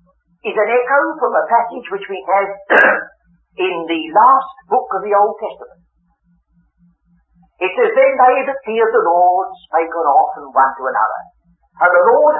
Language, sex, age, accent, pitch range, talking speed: English, male, 50-69, British, 175-255 Hz, 165 wpm